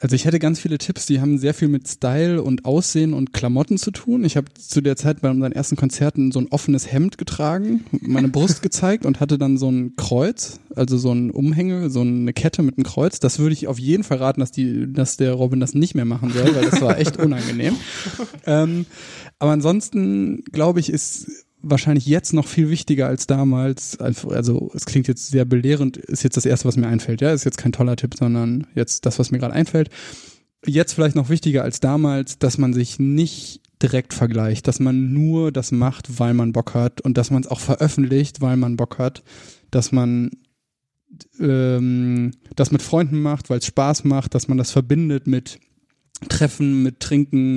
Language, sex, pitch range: German, male, 125-145 Hz